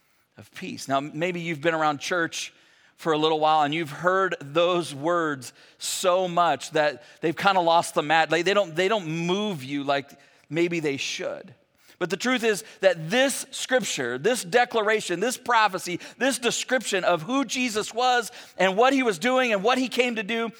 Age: 40-59